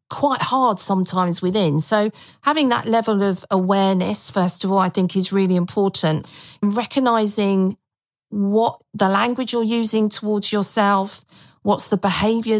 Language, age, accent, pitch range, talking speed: English, 40-59, British, 190-230 Hz, 140 wpm